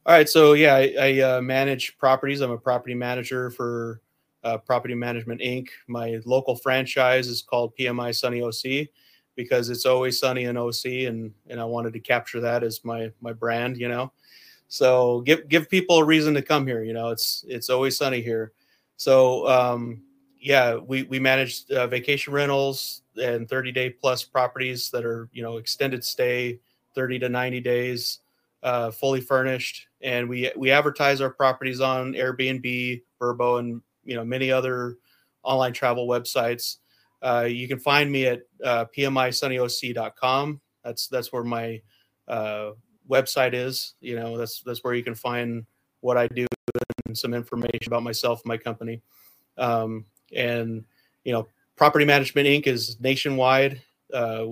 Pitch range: 120-130 Hz